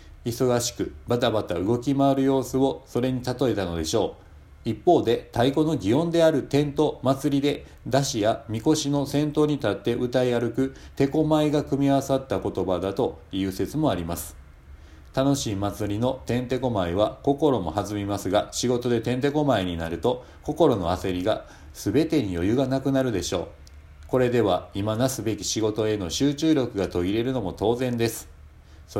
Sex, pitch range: male, 95-135 Hz